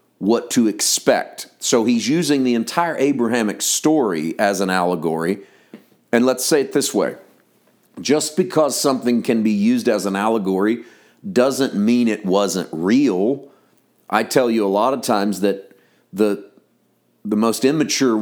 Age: 40-59